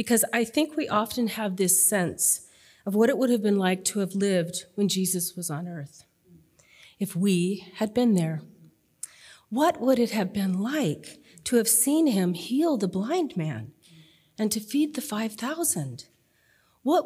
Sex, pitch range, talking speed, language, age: female, 175-245 Hz, 170 wpm, English, 40-59